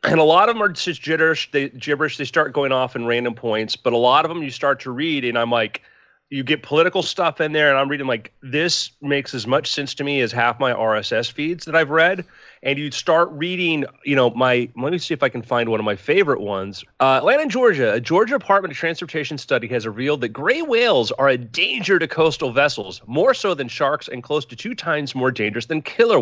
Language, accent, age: English, American, 30-49